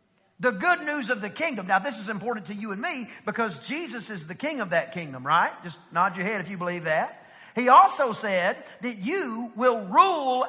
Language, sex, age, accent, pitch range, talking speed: English, male, 50-69, American, 190-250 Hz, 215 wpm